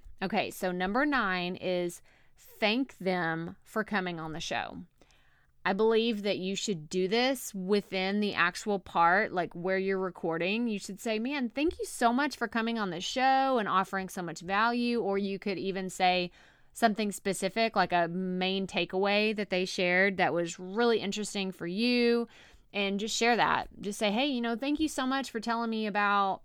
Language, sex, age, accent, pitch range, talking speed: English, female, 20-39, American, 185-230 Hz, 185 wpm